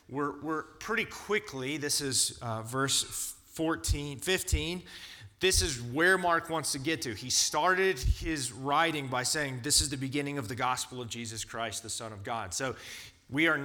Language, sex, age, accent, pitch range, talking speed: English, male, 30-49, American, 120-165 Hz, 180 wpm